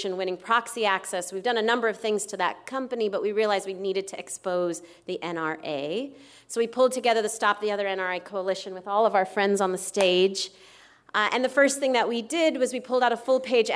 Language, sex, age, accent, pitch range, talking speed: English, female, 30-49, American, 195-235 Hz, 230 wpm